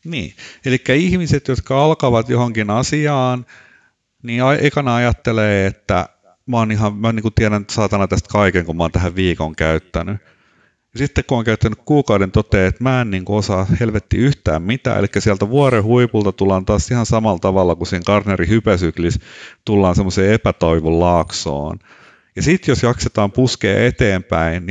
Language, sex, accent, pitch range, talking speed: Finnish, male, native, 90-115 Hz, 155 wpm